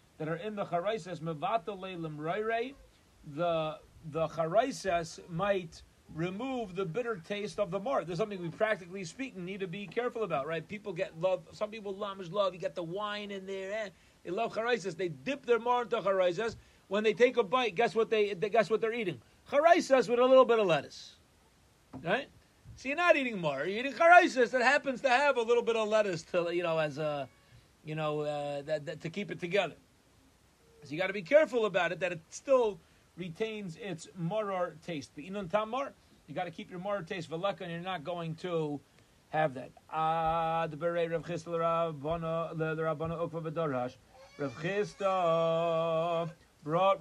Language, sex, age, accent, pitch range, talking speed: English, male, 40-59, American, 165-225 Hz, 170 wpm